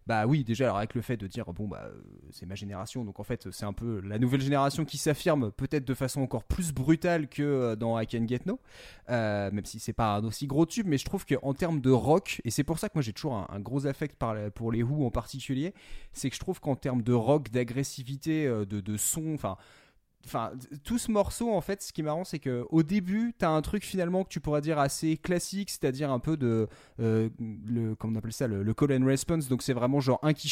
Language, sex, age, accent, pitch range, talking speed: French, male, 20-39, French, 115-165 Hz, 250 wpm